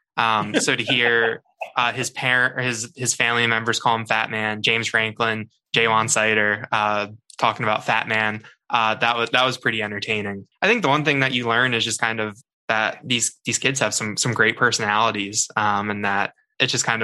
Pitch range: 105-120 Hz